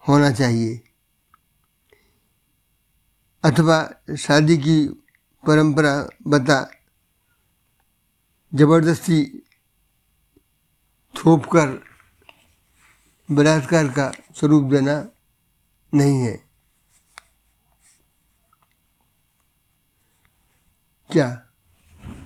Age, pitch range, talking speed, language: 60-79, 125-160 Hz, 45 wpm, Hindi